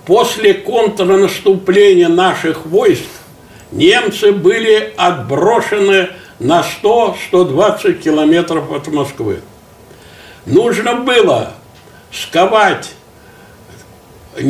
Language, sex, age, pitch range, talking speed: Russian, male, 60-79, 150-210 Hz, 60 wpm